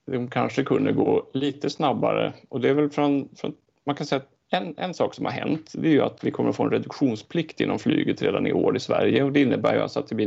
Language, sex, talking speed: Swedish, male, 275 wpm